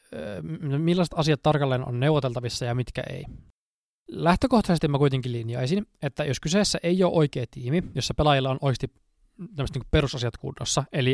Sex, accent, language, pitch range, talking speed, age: male, native, Finnish, 125-155 Hz, 145 wpm, 20-39